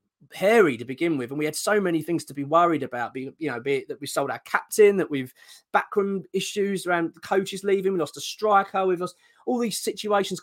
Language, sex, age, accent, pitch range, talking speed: English, male, 20-39, British, 135-180 Hz, 225 wpm